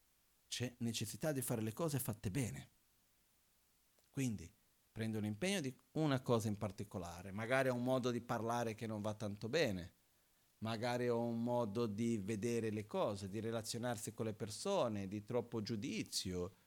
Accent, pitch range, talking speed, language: native, 110-150 Hz, 160 wpm, Italian